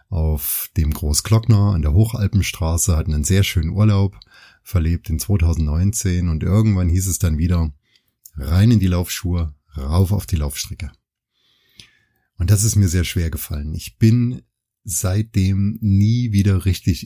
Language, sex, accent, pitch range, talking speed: German, male, German, 85-110 Hz, 145 wpm